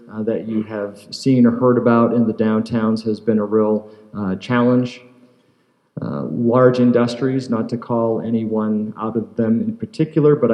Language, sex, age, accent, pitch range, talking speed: English, male, 40-59, American, 105-120 Hz, 165 wpm